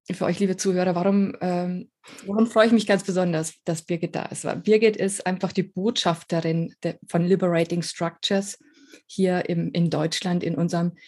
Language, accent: German, German